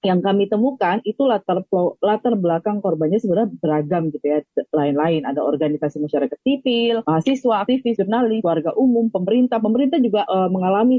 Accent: native